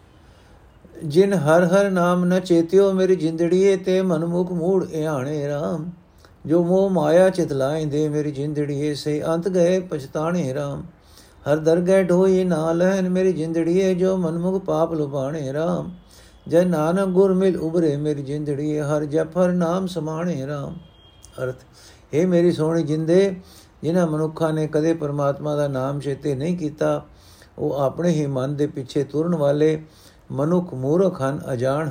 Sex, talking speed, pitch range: male, 140 wpm, 140-175 Hz